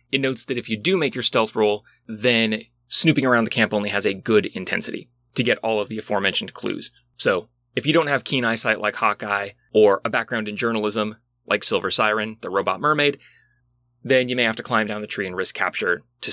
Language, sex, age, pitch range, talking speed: English, male, 30-49, 110-140 Hz, 220 wpm